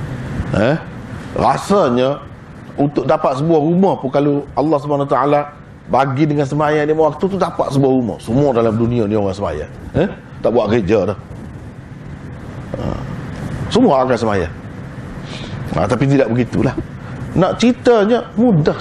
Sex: male